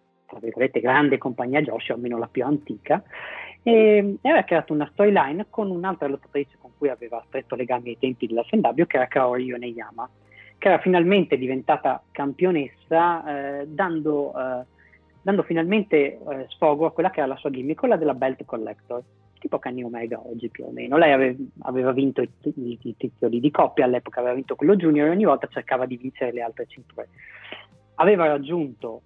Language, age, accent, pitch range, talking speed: Italian, 30-49, native, 125-160 Hz, 175 wpm